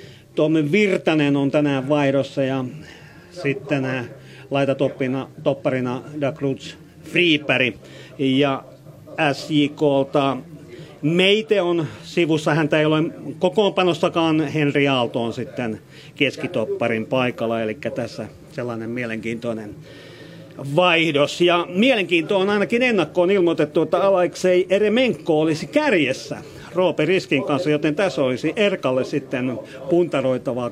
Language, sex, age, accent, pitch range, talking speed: Finnish, male, 40-59, native, 135-165 Hz, 95 wpm